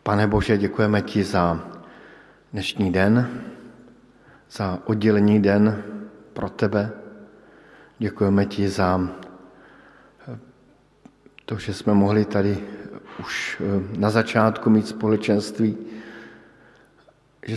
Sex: male